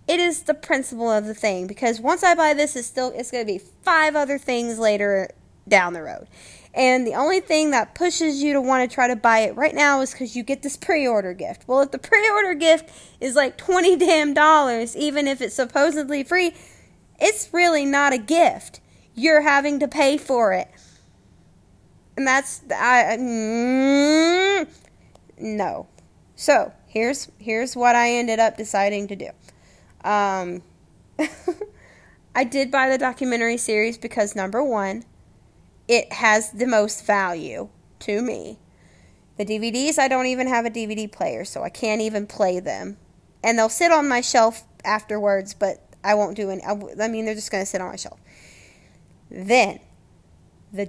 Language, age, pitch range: English, 20-39, 210-280 Hz